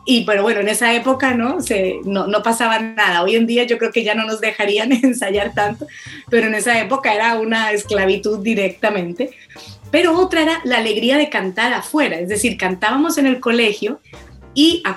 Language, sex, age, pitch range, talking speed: Spanish, female, 30-49, 205-250 Hz, 195 wpm